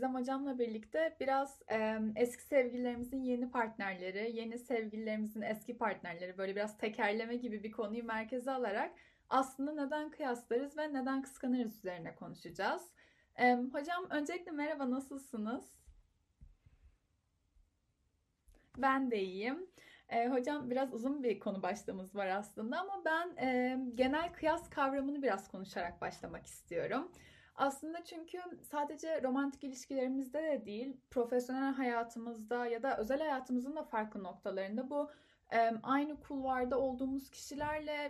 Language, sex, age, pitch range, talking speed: Turkish, female, 10-29, 220-280 Hz, 115 wpm